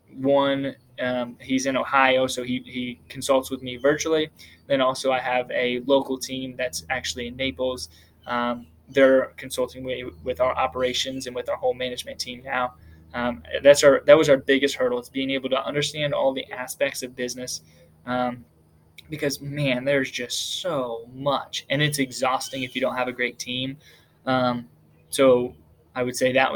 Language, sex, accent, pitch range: English, male, American, 125-135 Hz